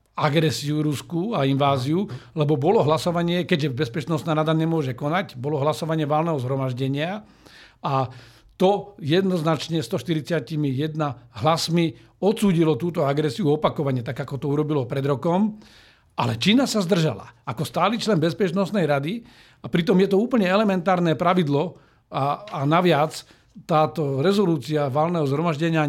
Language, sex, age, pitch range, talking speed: Slovak, male, 50-69, 145-180 Hz, 125 wpm